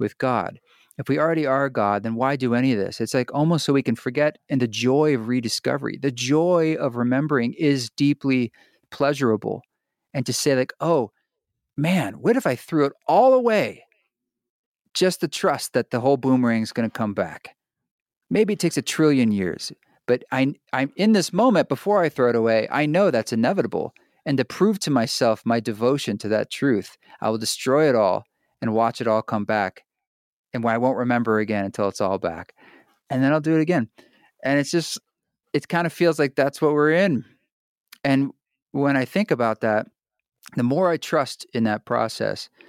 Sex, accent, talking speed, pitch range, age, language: male, American, 195 wpm, 115-155 Hz, 40-59, English